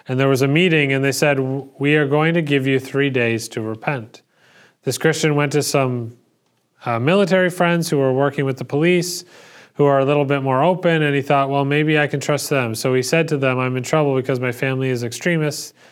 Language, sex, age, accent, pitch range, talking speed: English, male, 30-49, American, 130-155 Hz, 230 wpm